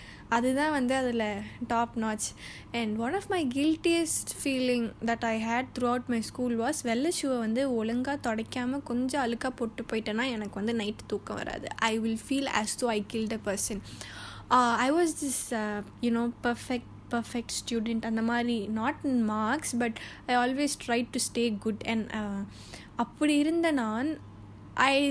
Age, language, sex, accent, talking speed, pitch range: 10-29, Tamil, female, native, 160 wpm, 225-265 Hz